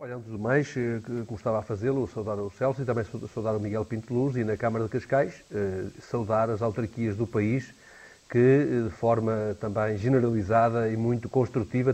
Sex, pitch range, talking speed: male, 115-135 Hz, 175 wpm